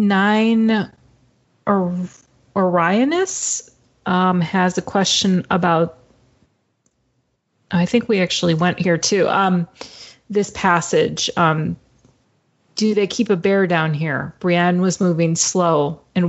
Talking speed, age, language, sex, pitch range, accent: 115 wpm, 30-49, English, female, 165-195 Hz, American